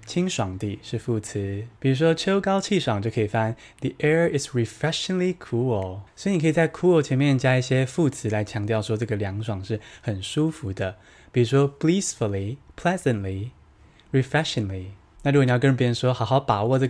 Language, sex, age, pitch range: Chinese, male, 20-39, 110-160 Hz